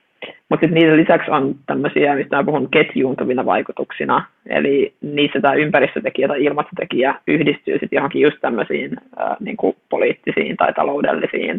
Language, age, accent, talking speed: Finnish, 20-39, native, 130 wpm